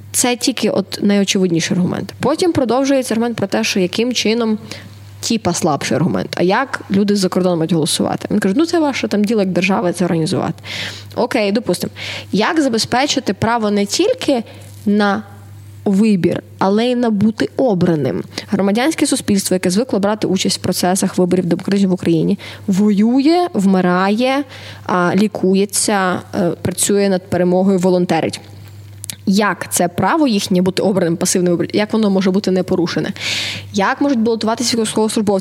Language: Ukrainian